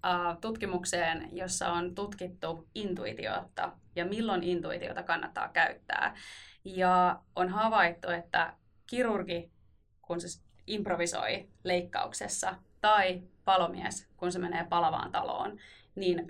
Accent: native